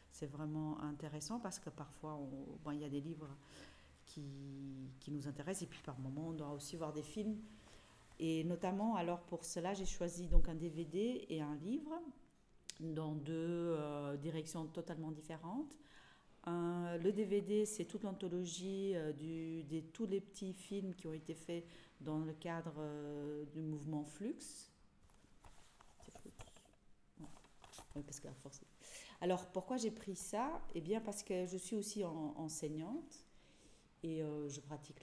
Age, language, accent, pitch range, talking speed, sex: 40-59, French, French, 150-185 Hz, 160 wpm, female